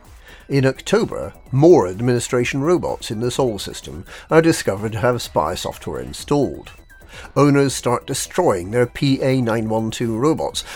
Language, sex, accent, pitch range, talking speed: English, male, British, 105-140 Hz, 125 wpm